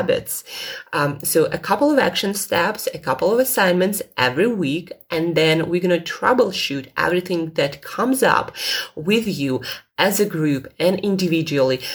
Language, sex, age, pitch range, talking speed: English, female, 20-39, 160-190 Hz, 150 wpm